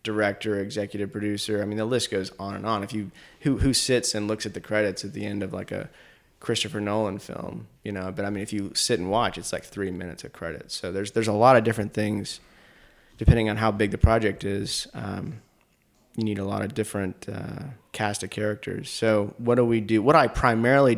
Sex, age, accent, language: male, 20-39, American, English